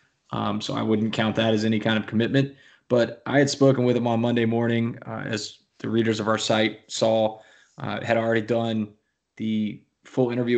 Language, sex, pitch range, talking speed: English, male, 110-125 Hz, 200 wpm